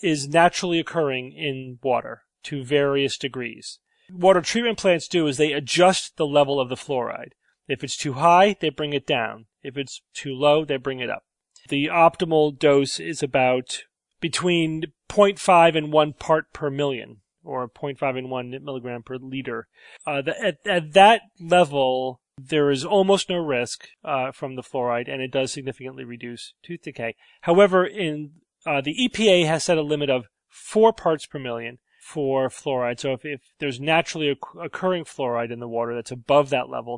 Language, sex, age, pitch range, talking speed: English, male, 40-59, 130-170 Hz, 175 wpm